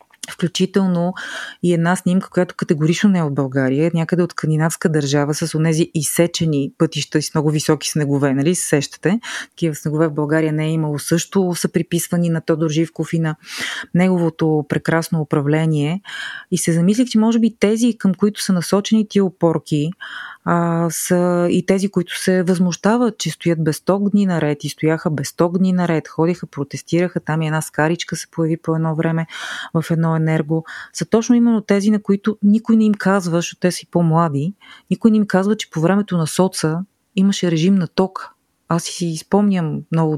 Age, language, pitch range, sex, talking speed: 30-49, Bulgarian, 160-190 Hz, female, 180 wpm